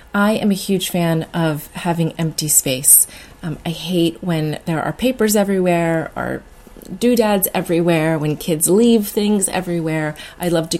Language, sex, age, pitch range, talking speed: English, female, 30-49, 150-190 Hz, 155 wpm